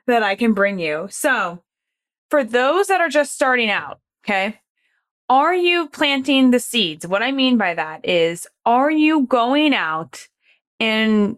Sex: female